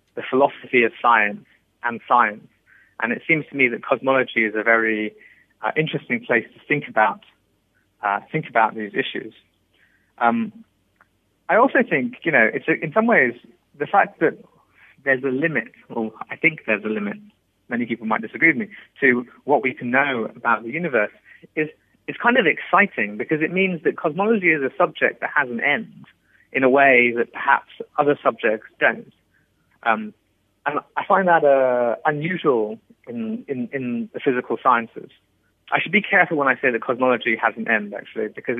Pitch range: 115-165 Hz